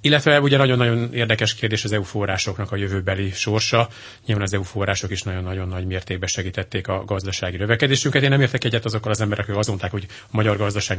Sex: male